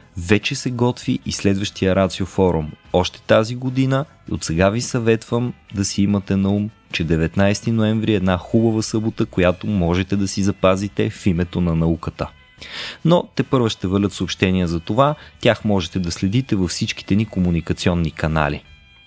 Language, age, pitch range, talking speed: Bulgarian, 30-49, 90-115 Hz, 160 wpm